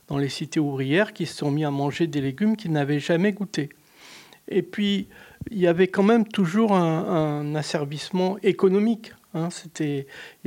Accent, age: French, 60-79